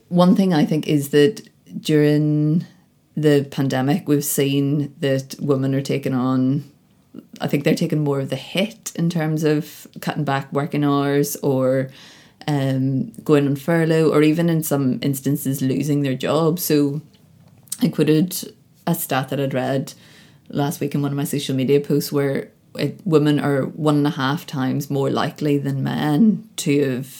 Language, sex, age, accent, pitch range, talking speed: English, female, 20-39, Irish, 135-155 Hz, 165 wpm